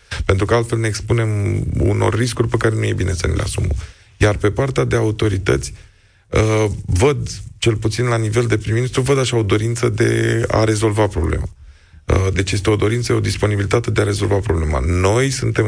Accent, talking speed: native, 185 wpm